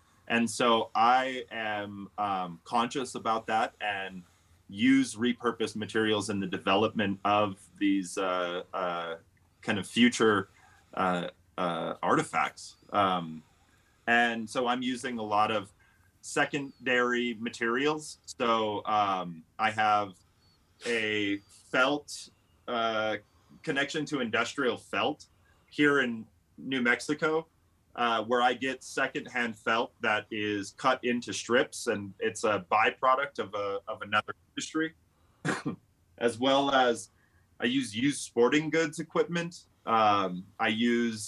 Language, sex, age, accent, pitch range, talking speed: English, male, 30-49, American, 95-125 Hz, 120 wpm